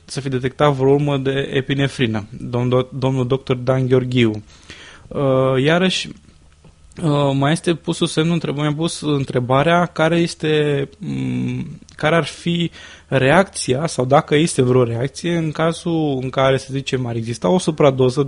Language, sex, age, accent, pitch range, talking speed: Romanian, male, 20-39, native, 130-165 Hz, 130 wpm